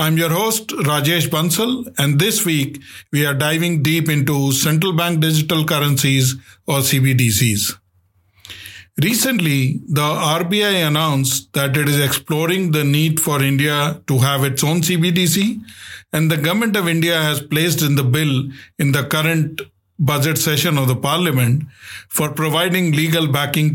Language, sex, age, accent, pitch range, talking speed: English, male, 50-69, Indian, 135-165 Hz, 145 wpm